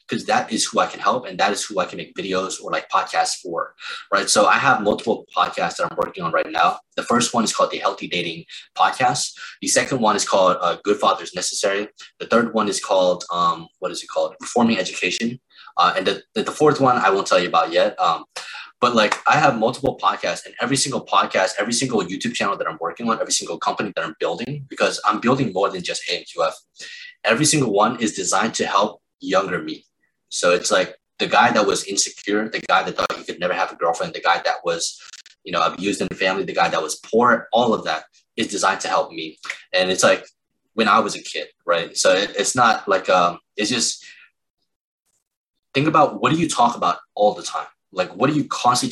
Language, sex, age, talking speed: English, male, 20-39, 230 wpm